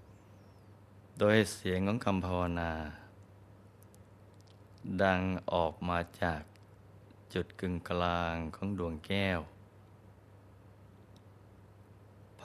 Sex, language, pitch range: male, Thai, 100-115 Hz